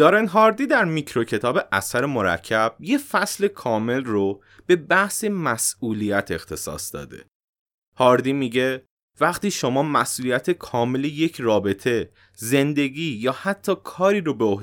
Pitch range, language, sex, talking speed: 110-170 Hz, Persian, male, 125 wpm